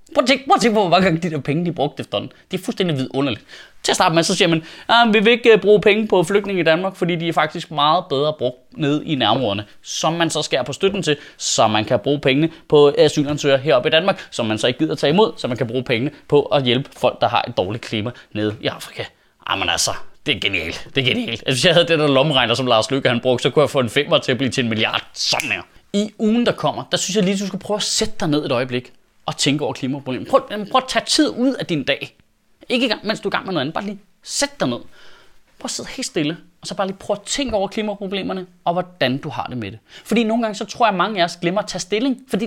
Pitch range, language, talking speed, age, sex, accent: 140-215 Hz, Danish, 280 wpm, 20-39, male, native